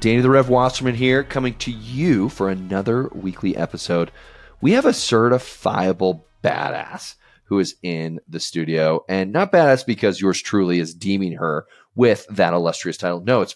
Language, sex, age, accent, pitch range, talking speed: English, male, 30-49, American, 90-130 Hz, 165 wpm